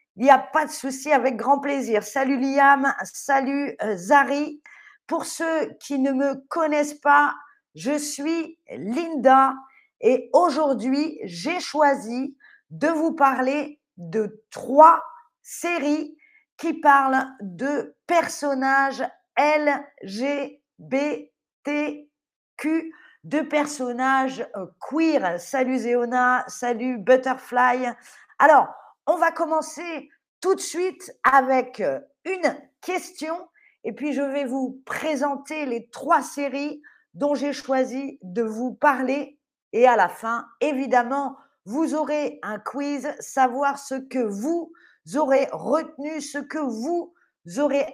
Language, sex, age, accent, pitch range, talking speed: French, female, 40-59, French, 265-310 Hz, 110 wpm